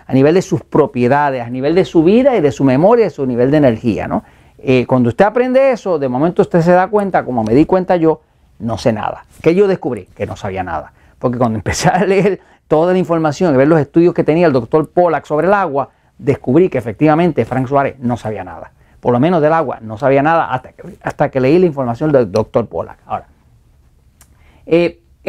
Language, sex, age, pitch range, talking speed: Spanish, male, 40-59, 125-175 Hz, 225 wpm